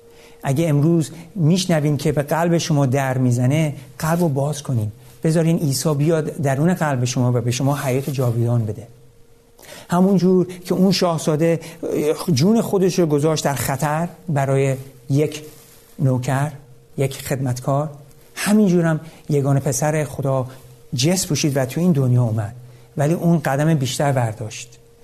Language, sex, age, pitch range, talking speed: Persian, male, 60-79, 130-175 Hz, 135 wpm